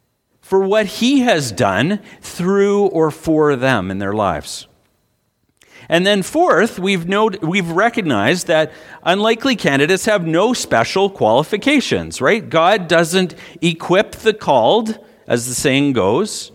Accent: American